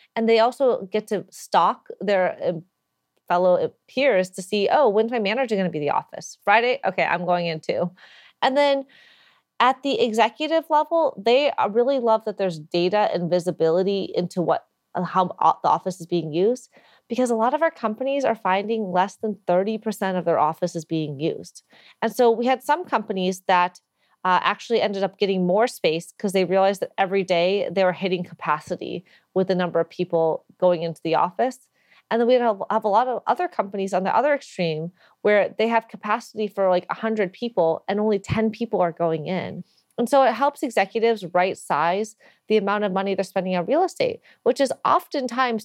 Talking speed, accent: 190 wpm, American